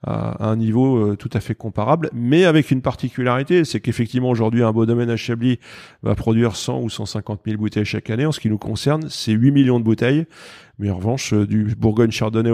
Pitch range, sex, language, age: 110-130 Hz, male, French, 30-49